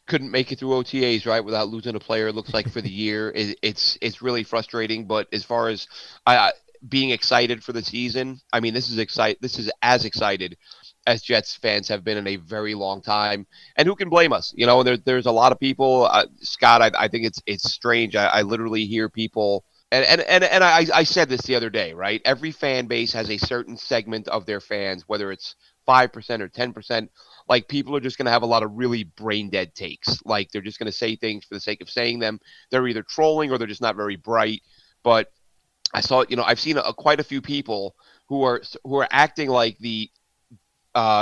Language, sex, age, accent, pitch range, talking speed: English, male, 30-49, American, 110-135 Hz, 235 wpm